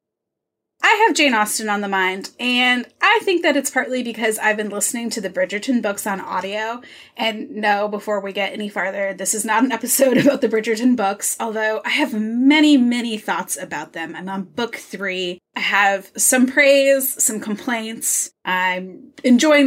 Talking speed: 180 wpm